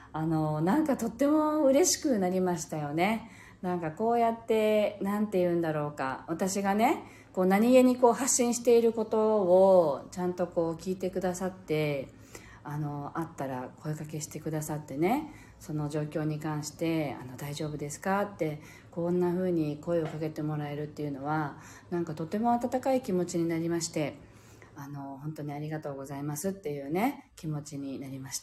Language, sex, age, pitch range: Japanese, female, 40-59, 150-225 Hz